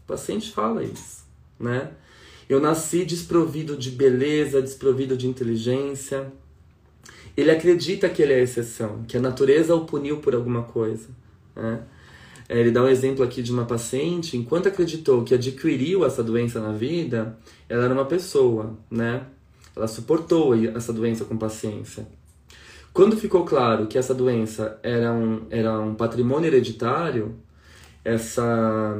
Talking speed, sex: 140 wpm, male